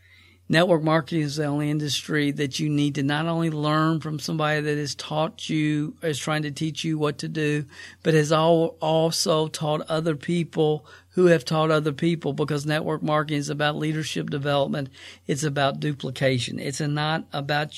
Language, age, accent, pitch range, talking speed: English, 50-69, American, 125-155 Hz, 170 wpm